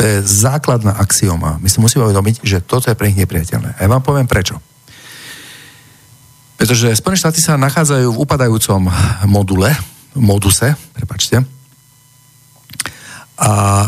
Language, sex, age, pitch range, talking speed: Slovak, male, 50-69, 95-135 Hz, 125 wpm